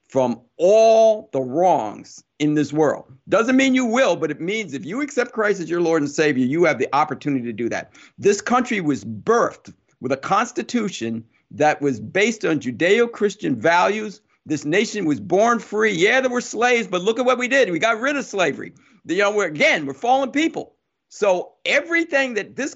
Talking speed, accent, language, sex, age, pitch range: 185 wpm, American, English, male, 50-69, 155-230 Hz